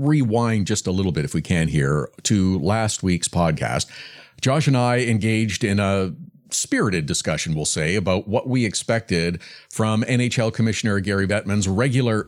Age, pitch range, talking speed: 50-69, 105-135 Hz, 160 wpm